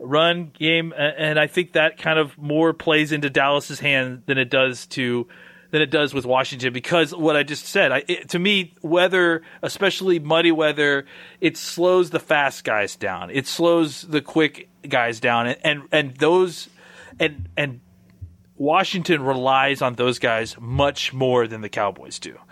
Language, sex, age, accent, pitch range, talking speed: English, male, 30-49, American, 125-160 Hz, 170 wpm